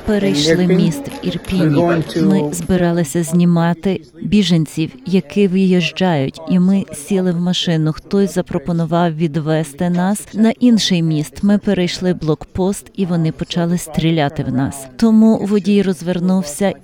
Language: Ukrainian